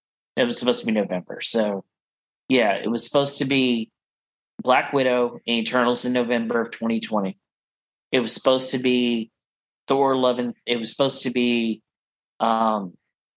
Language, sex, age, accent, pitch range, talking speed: English, male, 30-49, American, 110-120 Hz, 155 wpm